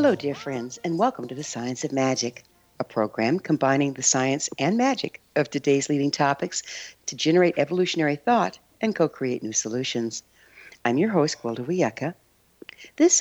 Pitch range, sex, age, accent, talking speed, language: 130-195 Hz, female, 60-79, American, 155 wpm, English